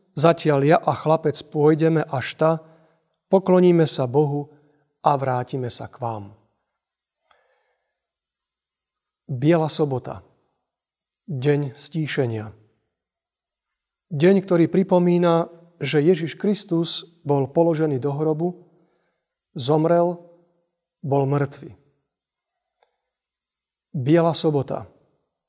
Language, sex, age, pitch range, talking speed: Slovak, male, 40-59, 145-180 Hz, 80 wpm